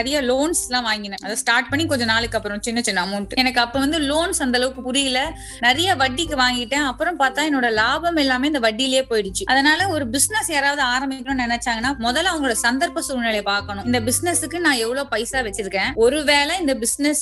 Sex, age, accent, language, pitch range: female, 20-39, native, Tamil, 230-280 Hz